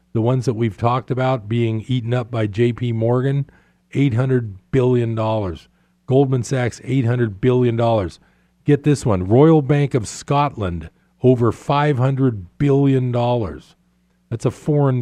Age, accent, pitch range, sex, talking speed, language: 40-59, American, 110-140 Hz, male, 125 wpm, English